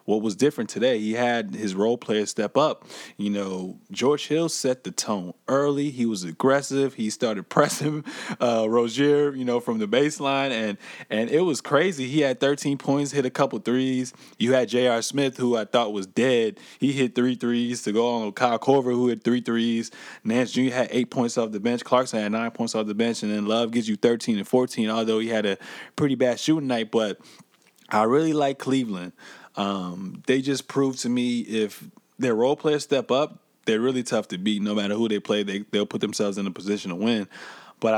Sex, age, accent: male, 20-39, American